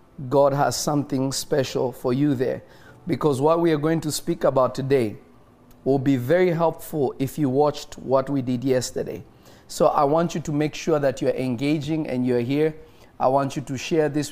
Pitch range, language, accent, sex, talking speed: 130-150 Hz, English, South African, male, 195 wpm